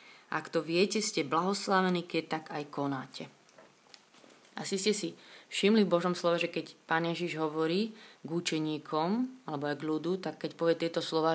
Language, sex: Slovak, female